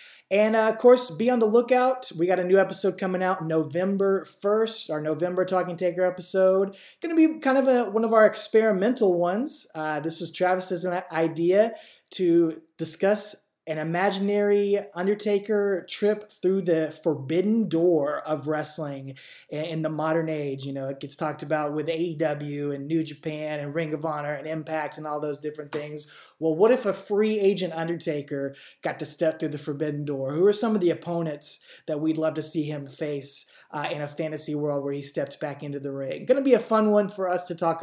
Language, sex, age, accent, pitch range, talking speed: English, male, 20-39, American, 155-195 Hz, 200 wpm